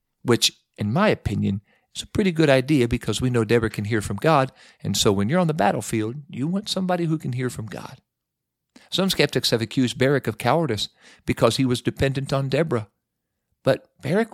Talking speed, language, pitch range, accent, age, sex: 195 wpm, English, 120-160 Hz, American, 50-69, male